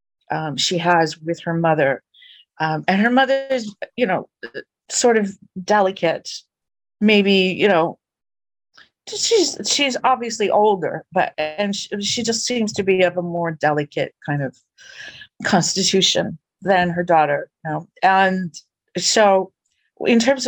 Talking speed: 130 wpm